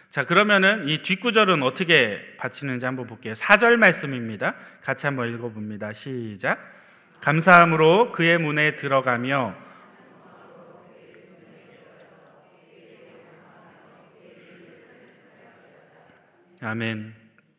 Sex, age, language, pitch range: male, 30-49, Korean, 130-195 Hz